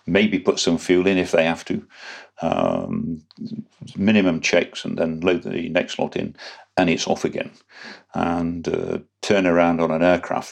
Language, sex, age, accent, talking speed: English, male, 50-69, British, 170 wpm